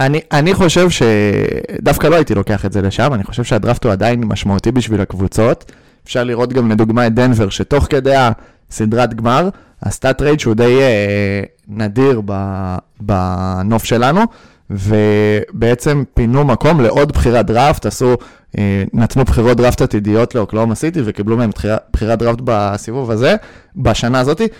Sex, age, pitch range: male, 20-39, 110-130 Hz